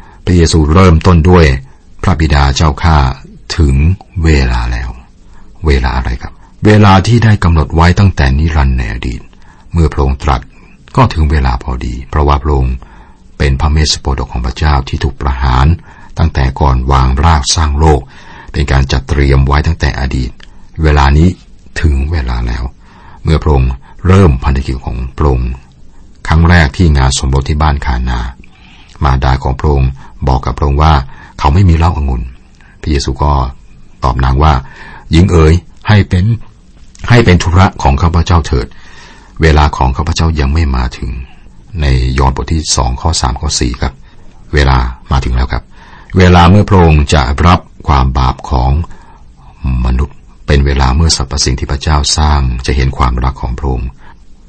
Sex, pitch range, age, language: male, 65-85 Hz, 60-79, Thai